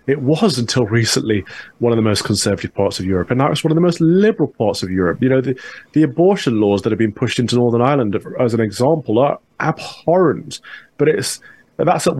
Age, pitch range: 30-49, 110-140 Hz